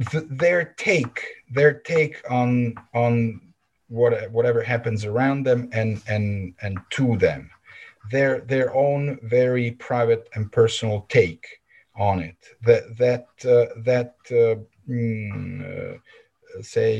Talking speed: 125 wpm